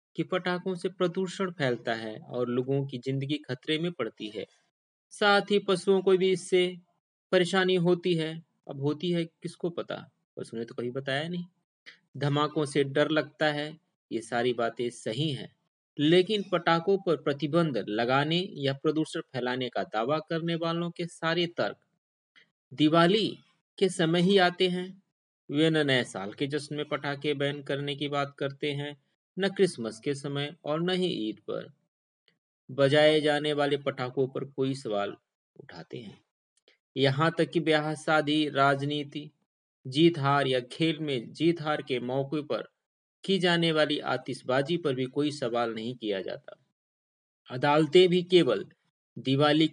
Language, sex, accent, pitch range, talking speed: Hindi, male, native, 135-170 Hz, 155 wpm